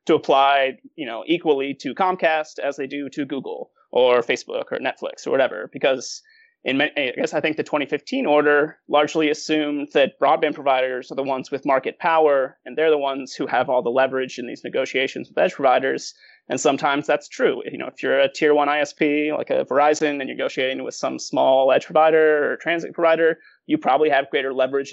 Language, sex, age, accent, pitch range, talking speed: English, male, 30-49, American, 135-170 Hz, 205 wpm